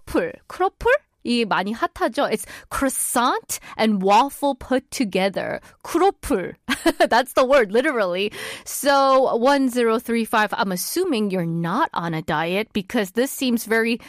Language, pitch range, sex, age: Korean, 195-275 Hz, female, 20-39